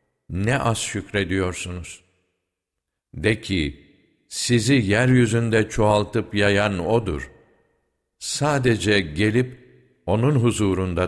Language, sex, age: Turkish, male, 60-79